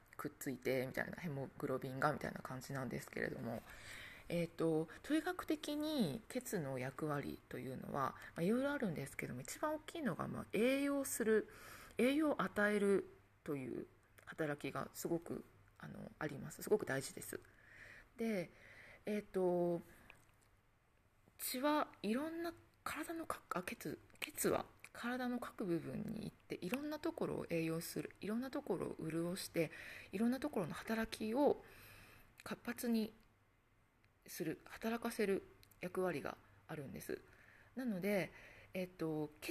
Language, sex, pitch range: Japanese, female, 165-250 Hz